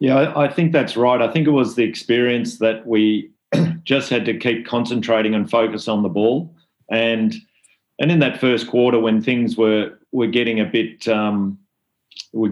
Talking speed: 180 wpm